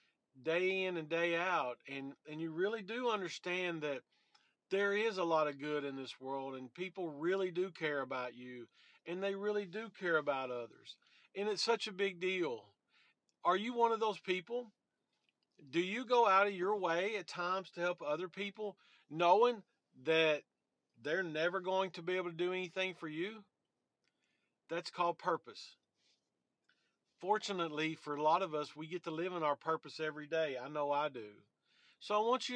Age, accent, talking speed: 40-59, American, 180 wpm